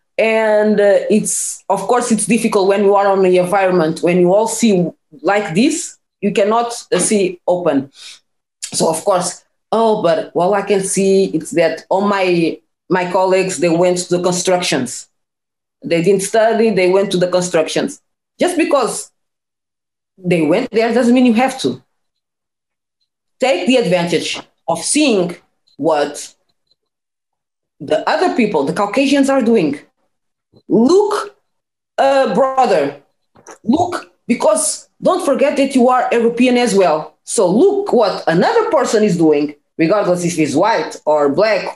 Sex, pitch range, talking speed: female, 180-260 Hz, 145 wpm